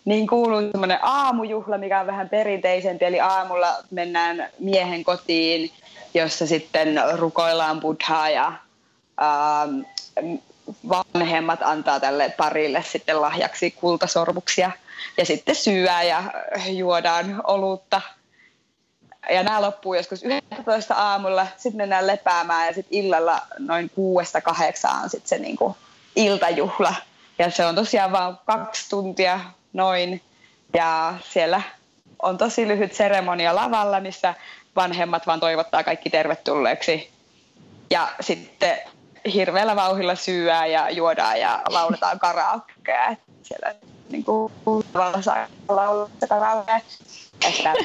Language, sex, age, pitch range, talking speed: Finnish, female, 20-39, 170-210 Hz, 105 wpm